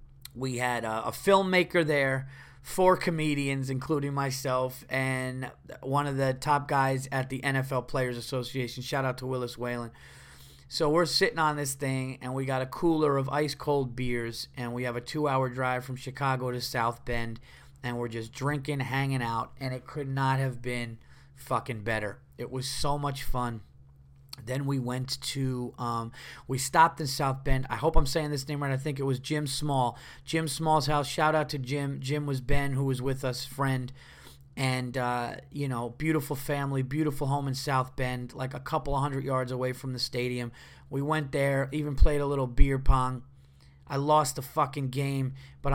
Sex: male